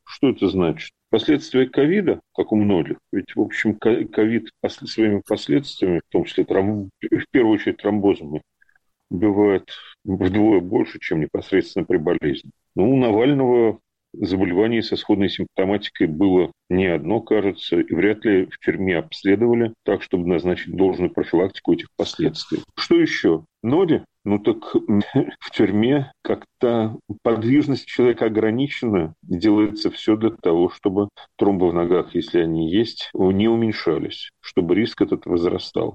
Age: 40-59